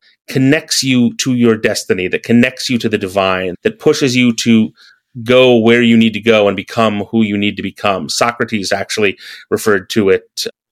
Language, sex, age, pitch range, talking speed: English, male, 30-49, 105-125 Hz, 185 wpm